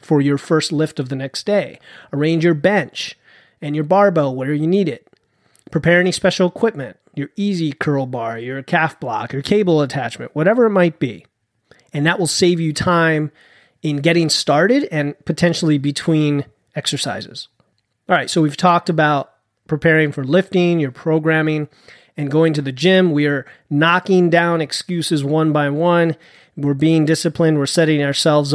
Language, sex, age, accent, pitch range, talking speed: English, male, 30-49, American, 145-170 Hz, 165 wpm